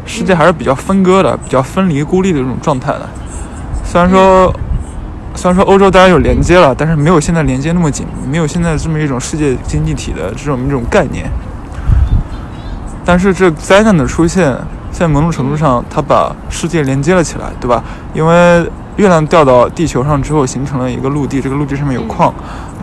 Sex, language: male, Chinese